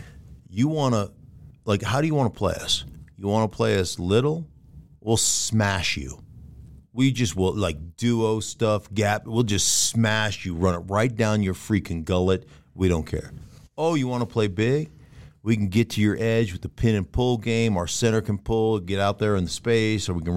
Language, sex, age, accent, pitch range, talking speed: English, male, 50-69, American, 90-115 Hz, 210 wpm